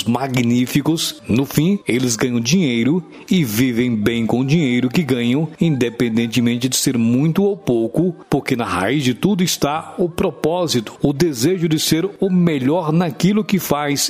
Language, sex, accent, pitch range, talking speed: Portuguese, male, Brazilian, 120-165 Hz, 155 wpm